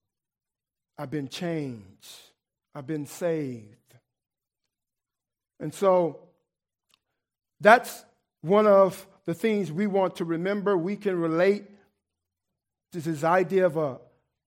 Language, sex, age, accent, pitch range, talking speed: English, male, 50-69, American, 160-225 Hz, 85 wpm